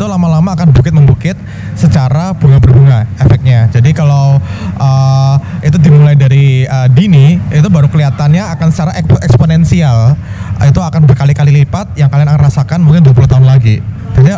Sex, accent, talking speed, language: male, native, 135 wpm, Indonesian